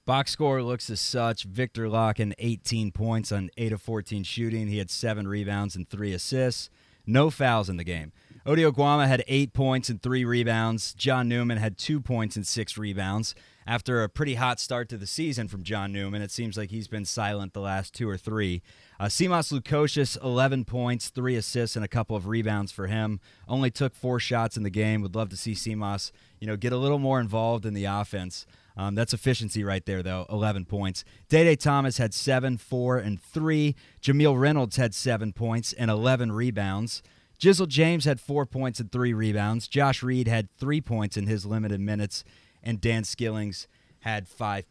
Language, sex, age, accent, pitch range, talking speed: English, male, 30-49, American, 105-130 Hz, 195 wpm